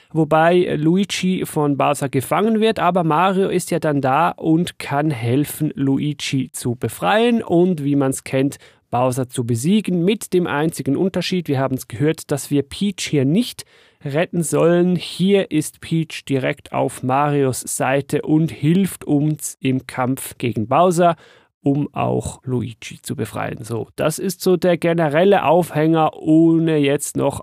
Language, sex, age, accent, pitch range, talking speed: German, male, 40-59, German, 140-190 Hz, 155 wpm